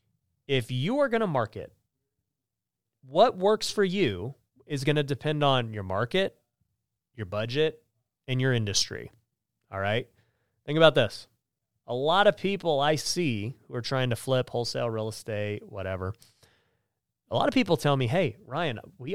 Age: 30-49